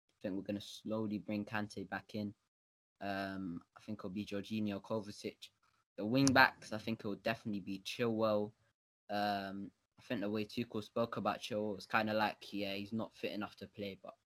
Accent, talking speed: British, 195 wpm